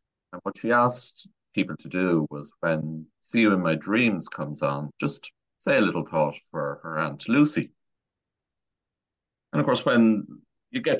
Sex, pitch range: male, 80-110 Hz